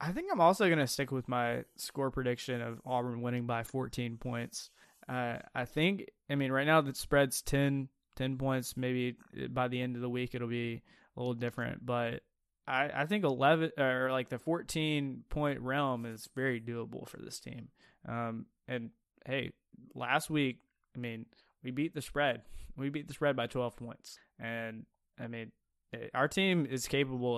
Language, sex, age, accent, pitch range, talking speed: English, male, 20-39, American, 120-145 Hz, 185 wpm